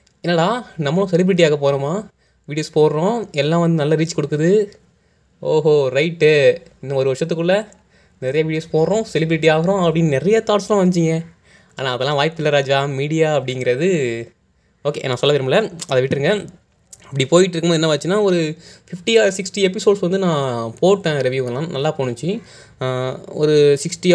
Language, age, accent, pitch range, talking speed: Tamil, 20-39, native, 130-185 Hz, 135 wpm